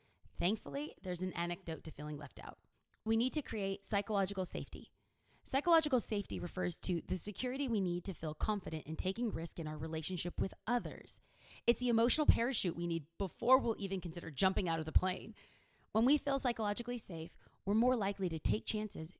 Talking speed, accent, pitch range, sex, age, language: 185 wpm, American, 165-225 Hz, female, 30-49, English